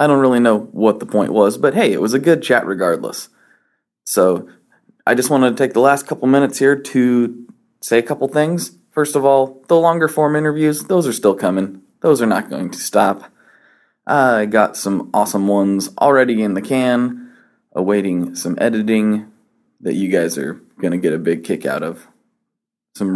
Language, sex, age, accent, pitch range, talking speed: English, male, 20-39, American, 105-145 Hz, 190 wpm